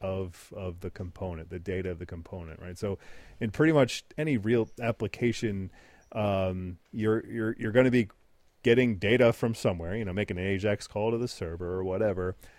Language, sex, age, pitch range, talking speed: English, male, 30-49, 95-120 Hz, 185 wpm